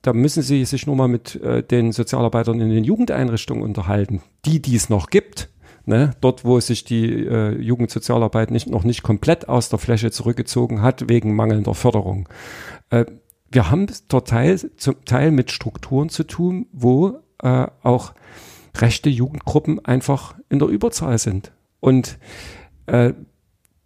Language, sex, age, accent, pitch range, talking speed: German, male, 50-69, German, 115-150 Hz, 150 wpm